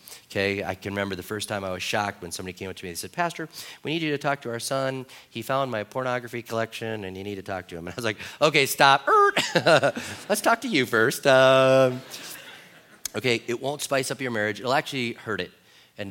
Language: English